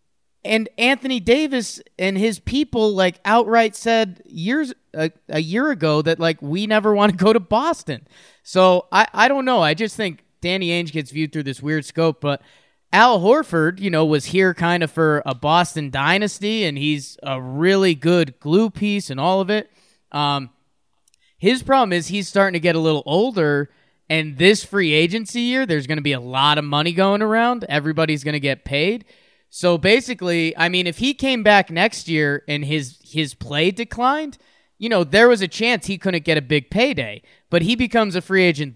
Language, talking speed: English, 195 wpm